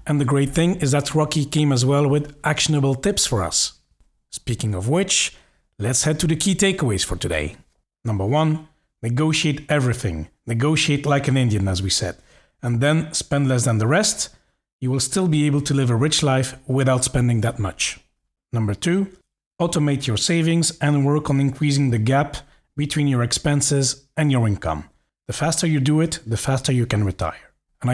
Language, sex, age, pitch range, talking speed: English, male, 40-59, 120-150 Hz, 185 wpm